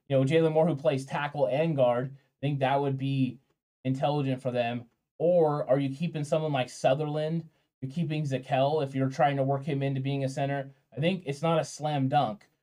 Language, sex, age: English, male, 20-39